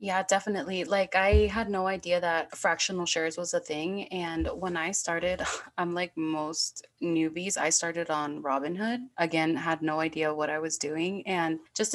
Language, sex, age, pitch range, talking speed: English, female, 20-39, 170-195 Hz, 175 wpm